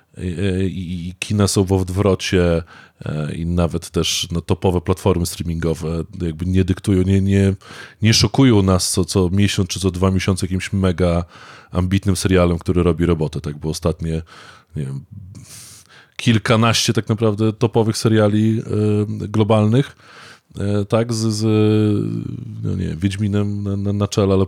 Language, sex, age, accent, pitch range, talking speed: Polish, male, 20-39, native, 90-110 Hz, 145 wpm